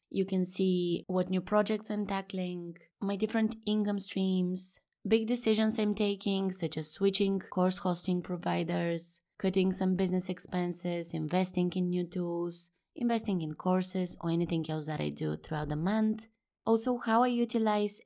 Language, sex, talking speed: English, female, 155 wpm